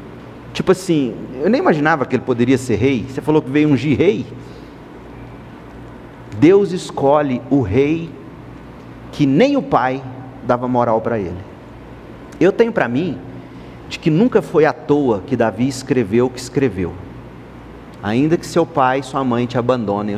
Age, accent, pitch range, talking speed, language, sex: 50-69, Brazilian, 110-155 Hz, 160 wpm, Portuguese, male